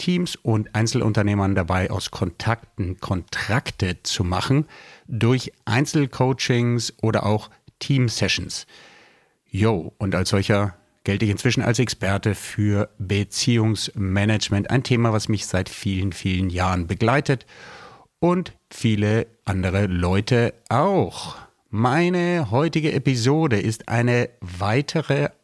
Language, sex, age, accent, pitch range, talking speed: German, male, 50-69, German, 100-125 Hz, 105 wpm